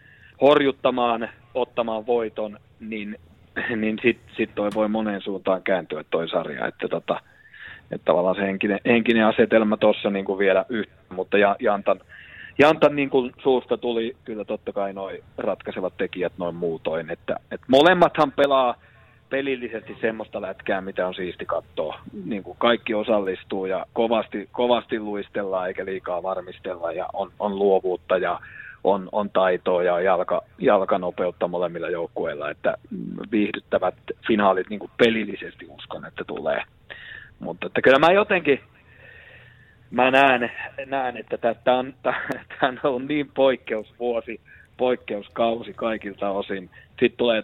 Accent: native